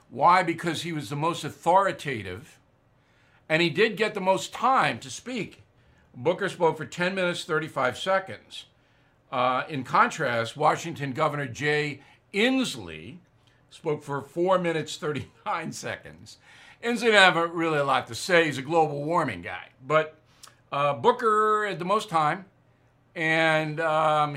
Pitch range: 140-180 Hz